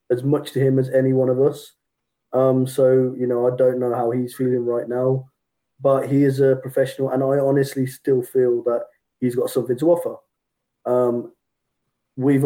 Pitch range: 125-140 Hz